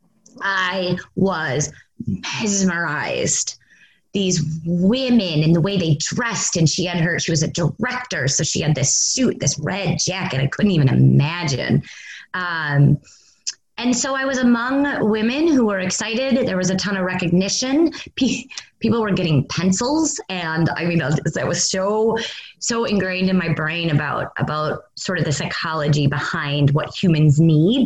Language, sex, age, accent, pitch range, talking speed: English, female, 20-39, American, 155-200 Hz, 155 wpm